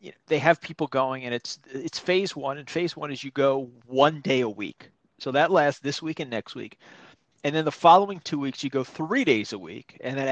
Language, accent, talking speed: English, American, 250 wpm